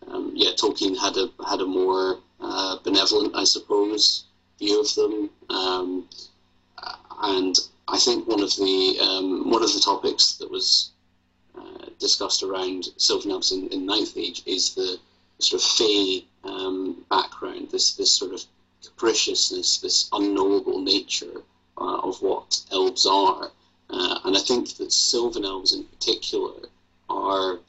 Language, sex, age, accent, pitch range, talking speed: English, male, 30-49, British, 320-390 Hz, 150 wpm